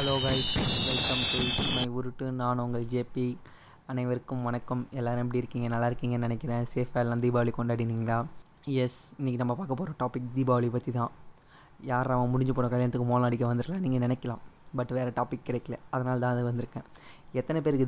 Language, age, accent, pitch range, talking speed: Tamil, 20-39, native, 125-130 Hz, 160 wpm